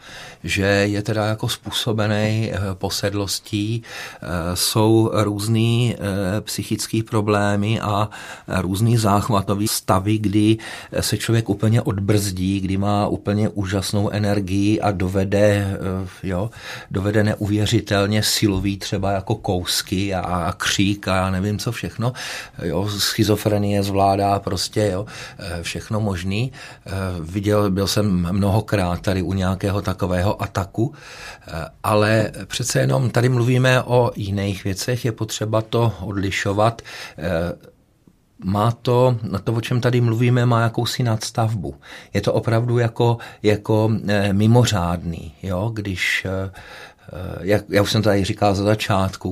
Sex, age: male, 50-69